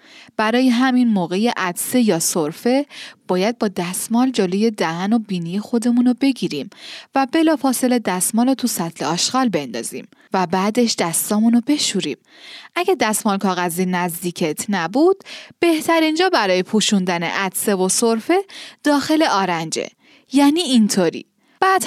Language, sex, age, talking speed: Persian, female, 10-29, 120 wpm